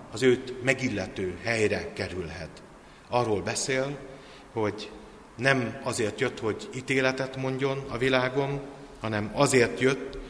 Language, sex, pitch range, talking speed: Hungarian, male, 105-130 Hz, 110 wpm